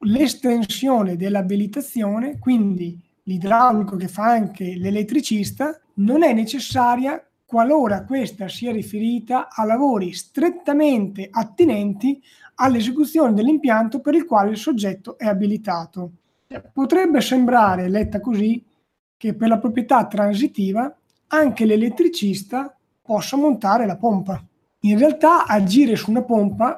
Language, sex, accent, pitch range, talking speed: Italian, male, native, 195-245 Hz, 110 wpm